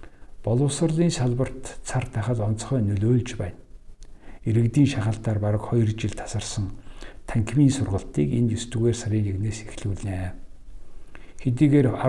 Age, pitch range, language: 60-79, 100-125 Hz, English